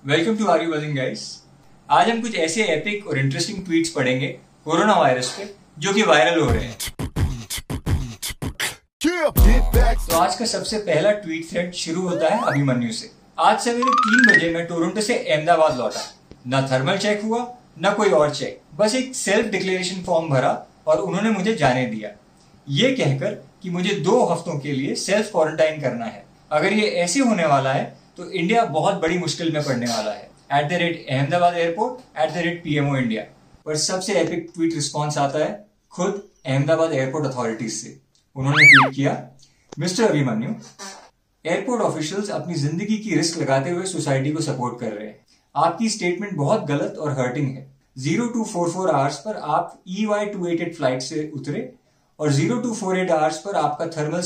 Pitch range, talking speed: 140-195 Hz, 150 wpm